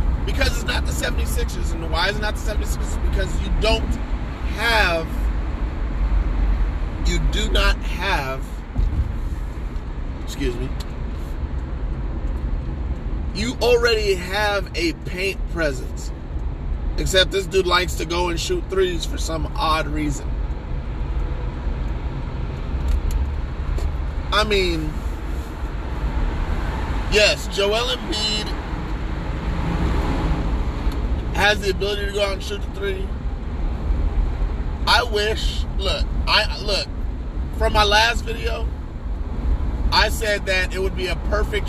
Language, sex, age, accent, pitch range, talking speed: English, male, 40-59, American, 65-80 Hz, 105 wpm